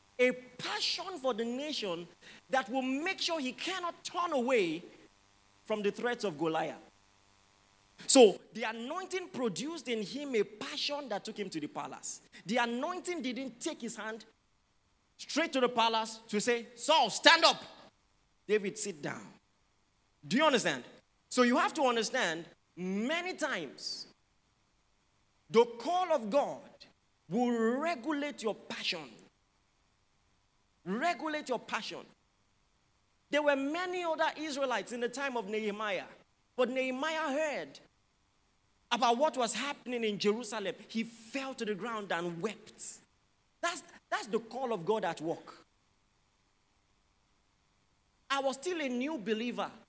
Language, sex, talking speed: English, male, 135 wpm